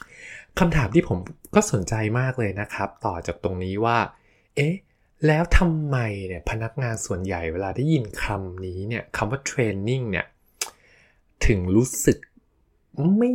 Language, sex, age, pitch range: Thai, male, 20-39, 95-135 Hz